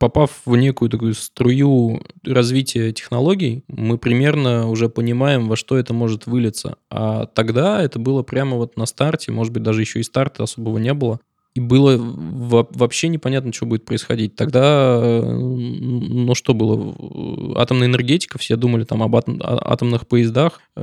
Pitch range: 110-130 Hz